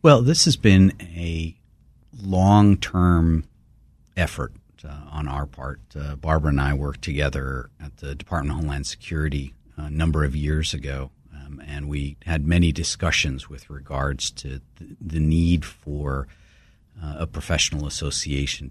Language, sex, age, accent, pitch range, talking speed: English, male, 50-69, American, 70-90 Hz, 145 wpm